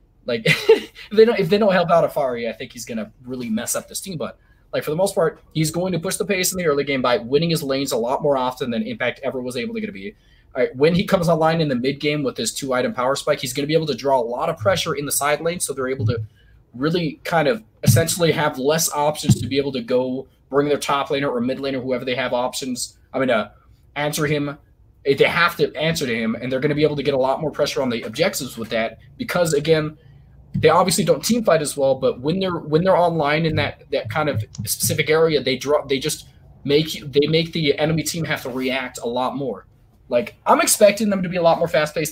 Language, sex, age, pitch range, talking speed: English, male, 20-39, 135-170 Hz, 260 wpm